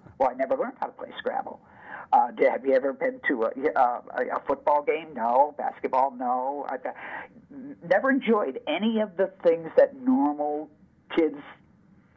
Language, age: English, 50-69